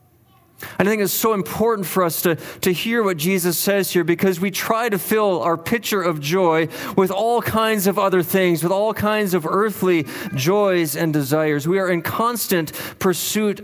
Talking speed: 185 wpm